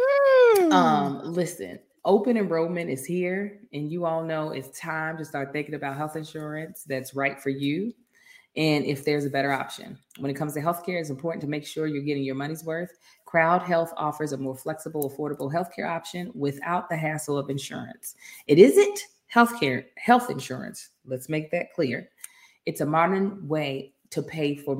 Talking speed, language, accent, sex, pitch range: 180 wpm, English, American, female, 135-175 Hz